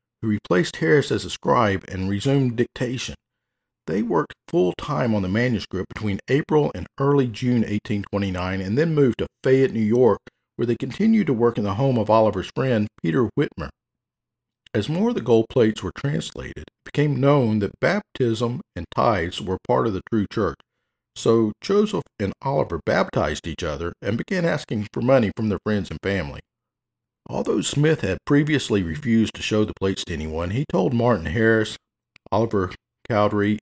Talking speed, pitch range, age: 170 wpm, 95-125 Hz, 50-69